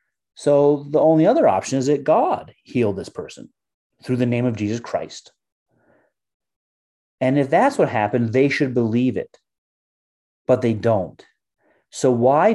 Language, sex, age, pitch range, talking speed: English, male, 30-49, 105-135 Hz, 150 wpm